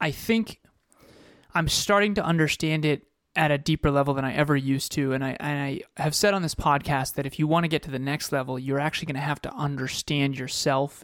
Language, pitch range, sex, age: English, 140-165 Hz, male, 30-49